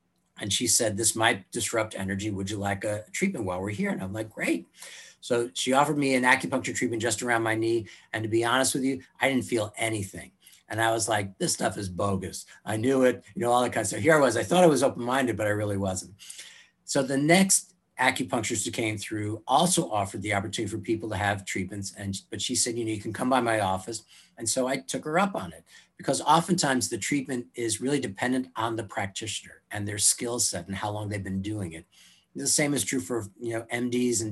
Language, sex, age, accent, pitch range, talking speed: English, male, 50-69, American, 105-130 Hz, 240 wpm